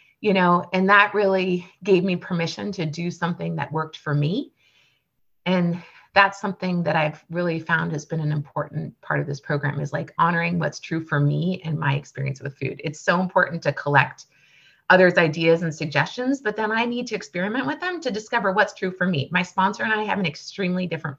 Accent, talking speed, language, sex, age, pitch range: American, 205 wpm, English, female, 30-49, 145-190 Hz